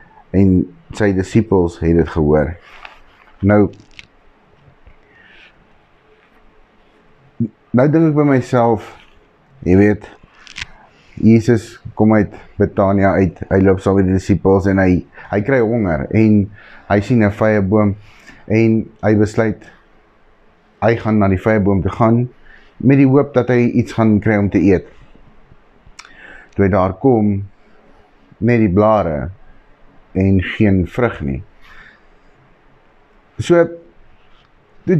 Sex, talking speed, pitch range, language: male, 120 wpm, 95-120 Hz, English